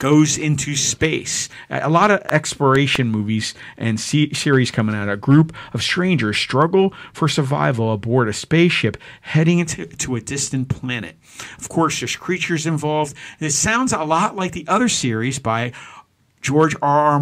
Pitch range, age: 120-160 Hz, 50-69